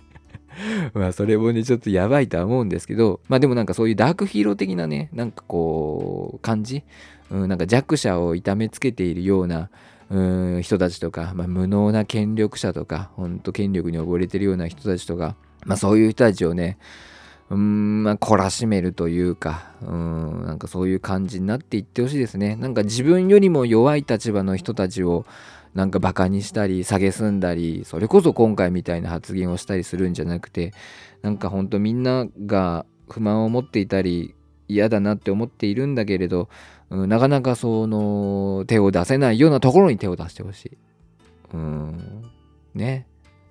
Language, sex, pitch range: Japanese, male, 90-130 Hz